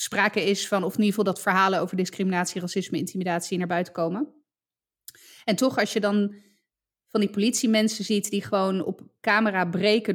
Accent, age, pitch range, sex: Dutch, 20-39, 185-215 Hz, female